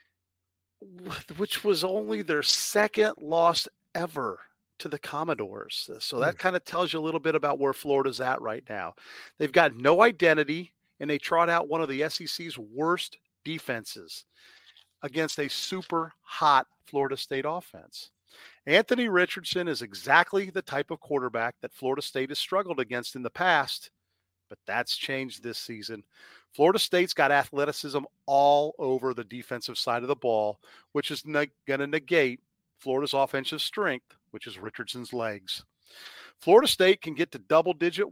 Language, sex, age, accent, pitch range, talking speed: English, male, 40-59, American, 125-170 Hz, 155 wpm